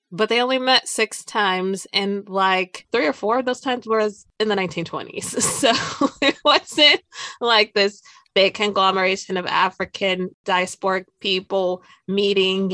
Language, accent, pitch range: English, American, 185-225 Hz